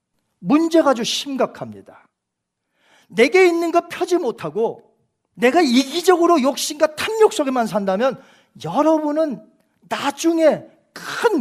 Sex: male